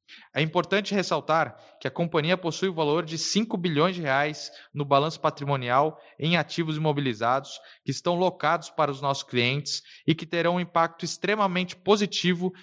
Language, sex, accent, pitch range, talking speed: Portuguese, male, Brazilian, 145-175 Hz, 155 wpm